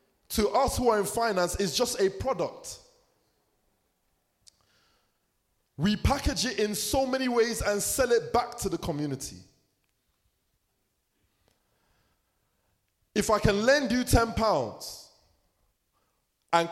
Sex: male